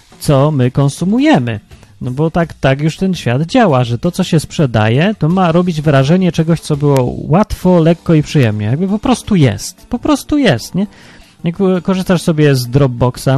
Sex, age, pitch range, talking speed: male, 30-49, 125-185 Hz, 180 wpm